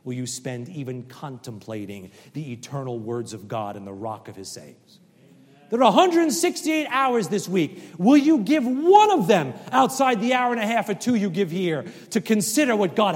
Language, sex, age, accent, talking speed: English, male, 40-59, American, 195 wpm